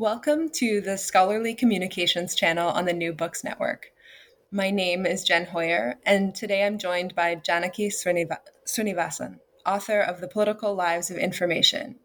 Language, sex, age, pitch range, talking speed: English, female, 20-39, 175-215 Hz, 150 wpm